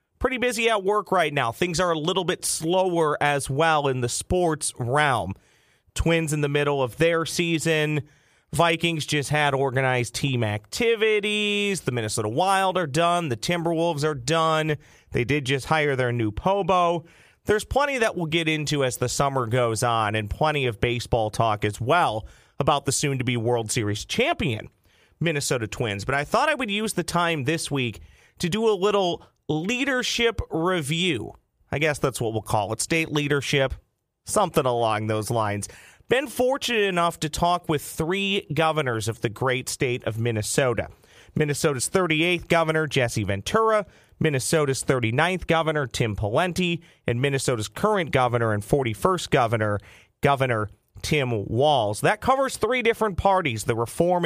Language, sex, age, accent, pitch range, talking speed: English, male, 30-49, American, 120-175 Hz, 160 wpm